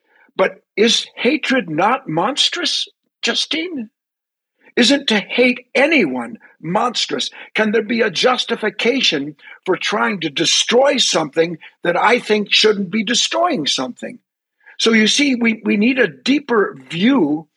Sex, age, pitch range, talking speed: male, 50-69, 170-235 Hz, 125 wpm